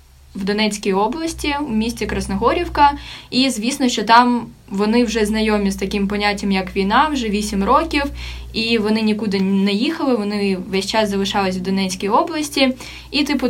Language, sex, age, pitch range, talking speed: Ukrainian, female, 10-29, 200-255 Hz, 155 wpm